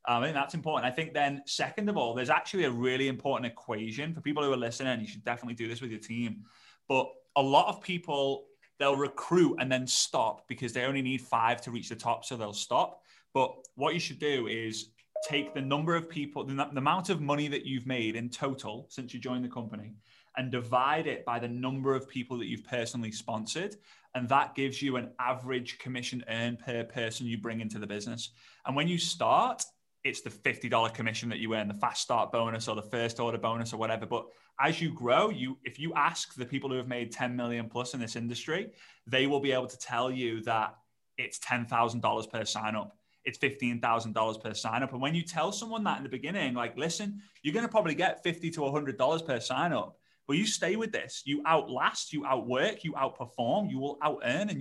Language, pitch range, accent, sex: English, 115-145 Hz, British, male